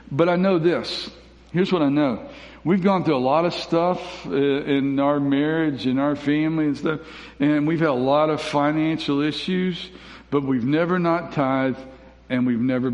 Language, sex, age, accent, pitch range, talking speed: English, male, 60-79, American, 135-165 Hz, 185 wpm